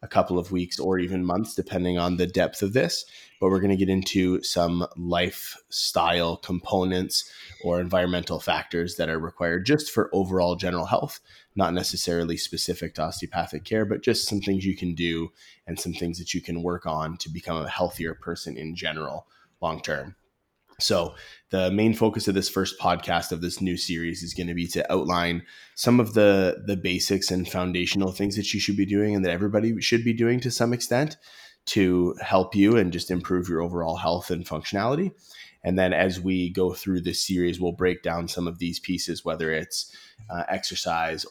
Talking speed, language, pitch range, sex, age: 195 wpm, English, 85-100 Hz, male, 20-39